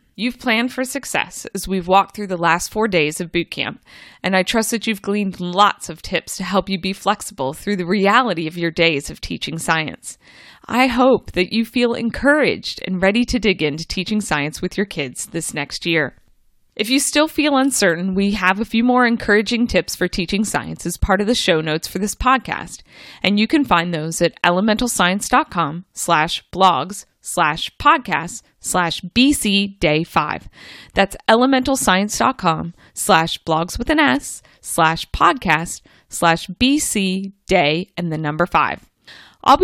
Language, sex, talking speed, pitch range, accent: English, female, 170 wpm, 165-235 Hz, American